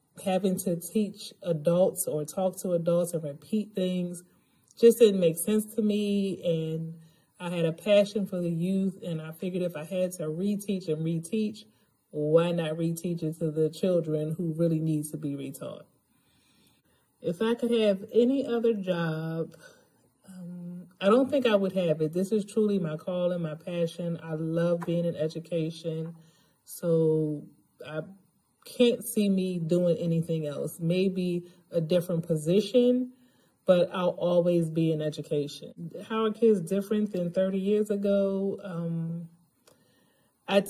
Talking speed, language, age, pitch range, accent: 155 wpm, English, 30-49, 165-200 Hz, American